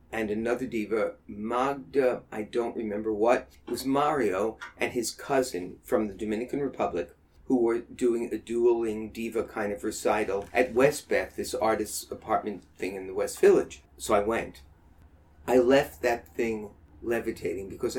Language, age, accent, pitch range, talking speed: English, 40-59, American, 105-130 Hz, 155 wpm